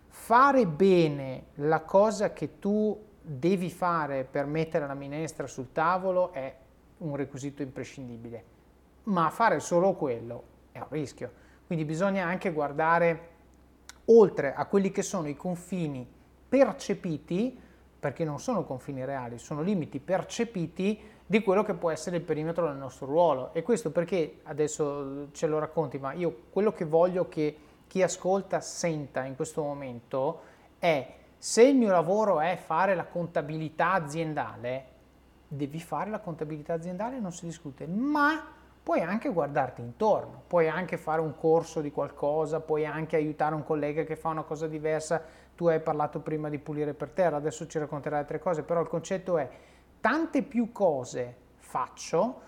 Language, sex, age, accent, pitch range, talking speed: Italian, male, 30-49, native, 145-185 Hz, 155 wpm